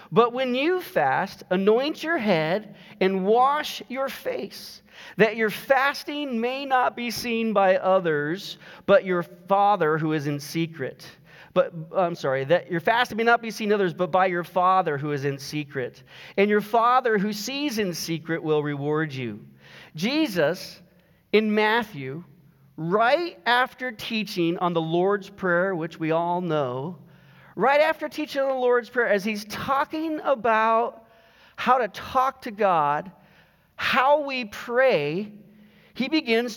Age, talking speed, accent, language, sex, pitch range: 40-59, 150 wpm, American, English, male, 175-245 Hz